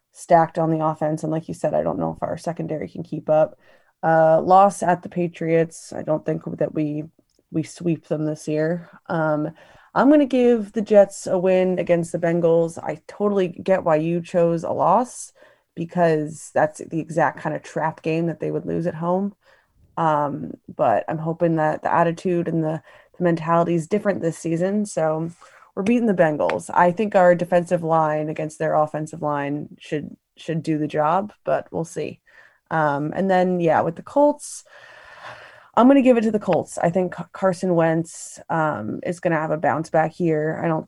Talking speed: 195 wpm